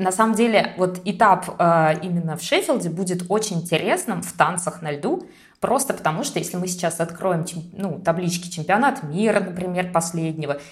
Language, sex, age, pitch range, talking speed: Russian, female, 20-39, 175-220 Hz, 155 wpm